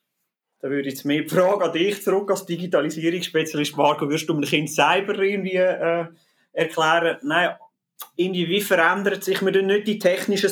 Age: 30-49